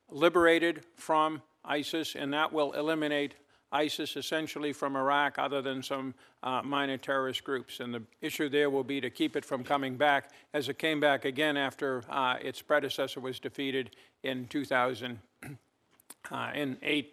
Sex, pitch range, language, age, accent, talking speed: male, 135-160 Hz, English, 50-69, American, 160 wpm